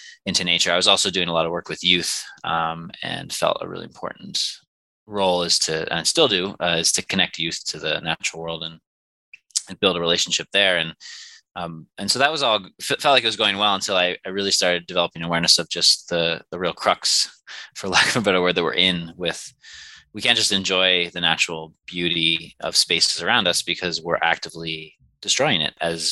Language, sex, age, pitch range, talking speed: English, male, 20-39, 80-95 Hz, 215 wpm